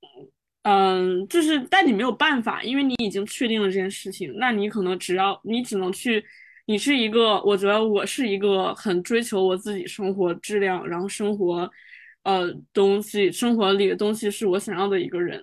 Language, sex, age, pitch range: Chinese, female, 20-39, 195-235 Hz